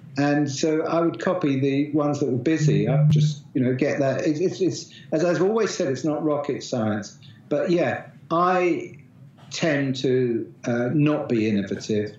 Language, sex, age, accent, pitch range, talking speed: English, male, 50-69, British, 130-155 Hz, 165 wpm